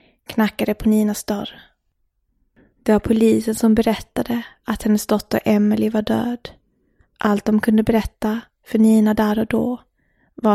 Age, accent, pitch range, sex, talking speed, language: 20-39, Swedish, 205-225 Hz, female, 140 wpm, English